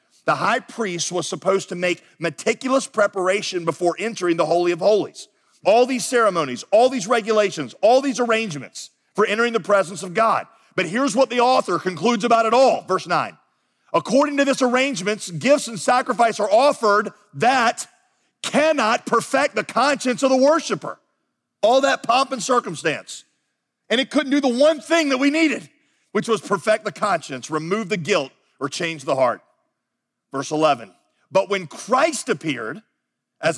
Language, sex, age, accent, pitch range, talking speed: English, male, 40-59, American, 185-250 Hz, 165 wpm